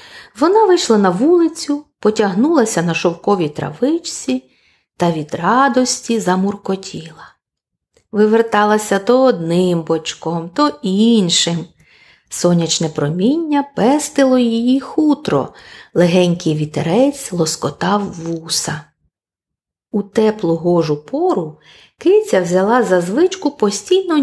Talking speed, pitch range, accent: 90 wpm, 170-265 Hz, native